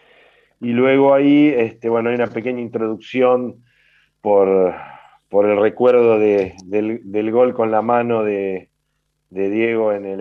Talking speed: 135 wpm